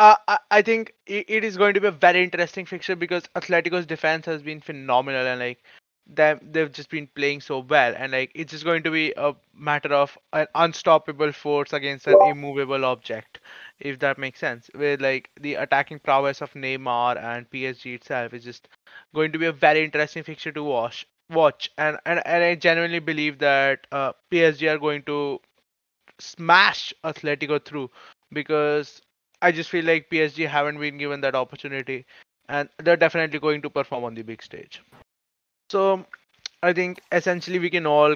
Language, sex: English, male